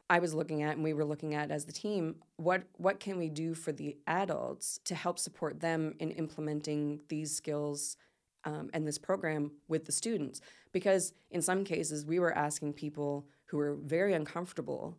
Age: 20-39